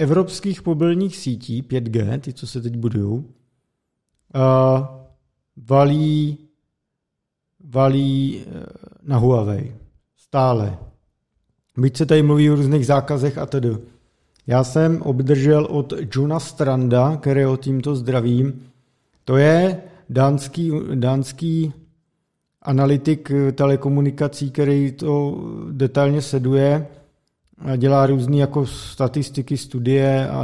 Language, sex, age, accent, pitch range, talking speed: Czech, male, 50-69, native, 130-155 Hz, 100 wpm